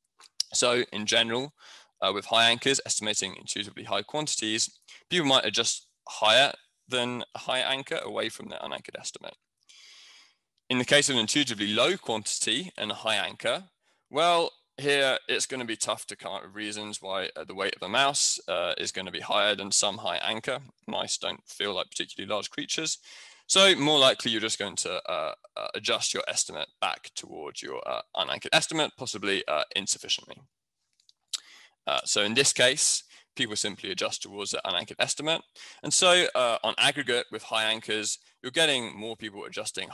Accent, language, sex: British, Chinese, male